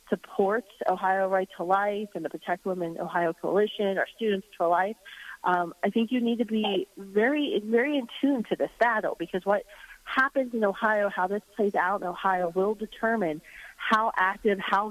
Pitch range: 170-205 Hz